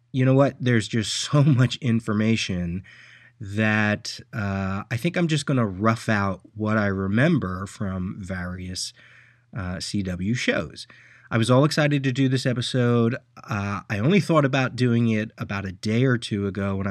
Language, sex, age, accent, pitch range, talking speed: English, male, 30-49, American, 100-125 Hz, 170 wpm